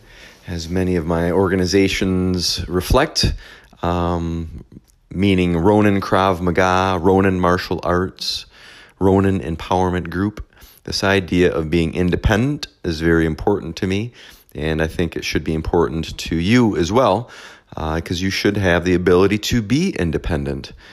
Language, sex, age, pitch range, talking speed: English, male, 30-49, 80-95 Hz, 140 wpm